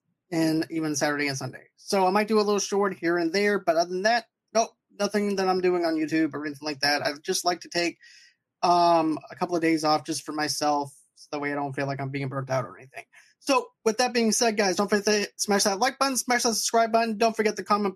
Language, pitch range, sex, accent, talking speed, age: English, 160-210 Hz, male, American, 260 wpm, 20-39